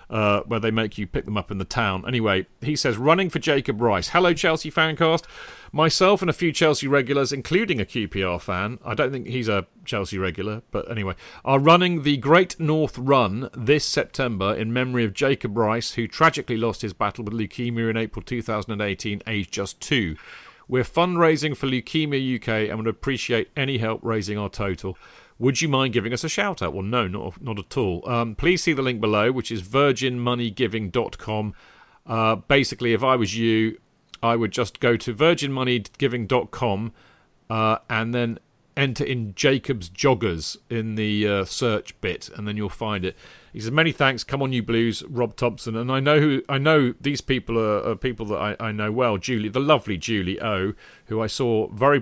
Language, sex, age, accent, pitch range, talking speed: English, male, 40-59, British, 105-135 Hz, 190 wpm